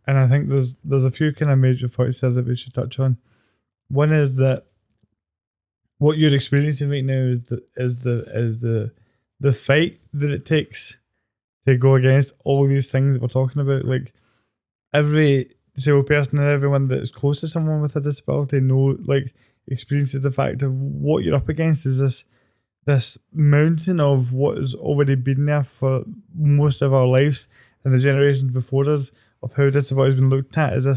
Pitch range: 125-145 Hz